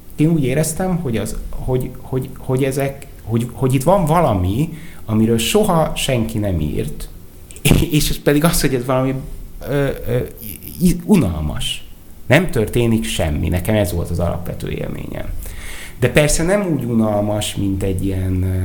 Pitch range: 90-135 Hz